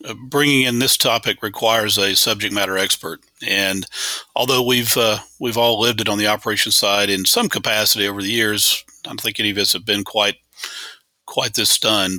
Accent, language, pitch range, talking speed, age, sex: American, English, 100-120 Hz, 195 wpm, 40-59, male